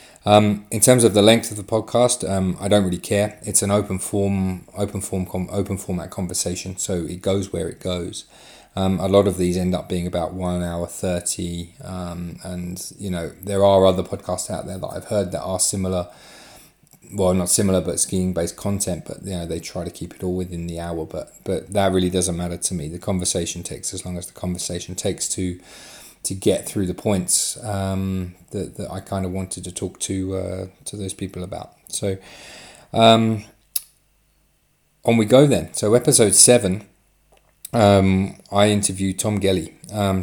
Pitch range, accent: 90-100 Hz, British